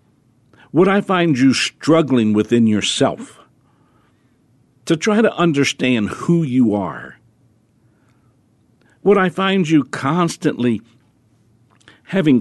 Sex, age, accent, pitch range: male, 60-79, American, 115-170 Hz